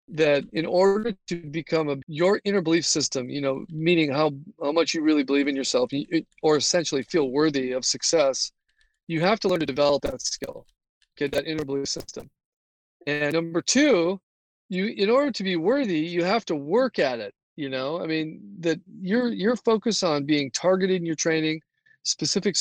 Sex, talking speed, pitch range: male, 190 wpm, 145-195 Hz